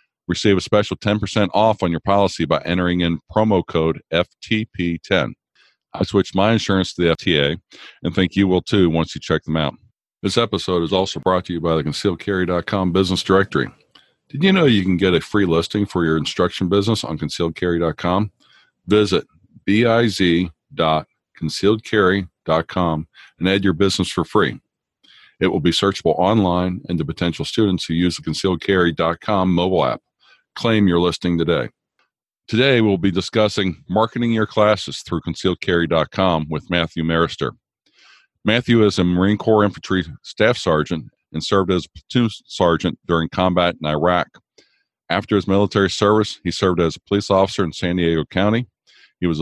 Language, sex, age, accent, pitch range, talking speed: English, male, 50-69, American, 85-100 Hz, 160 wpm